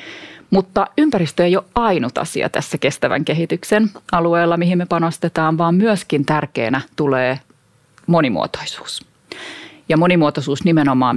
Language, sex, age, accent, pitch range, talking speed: Finnish, female, 30-49, native, 140-175 Hz, 115 wpm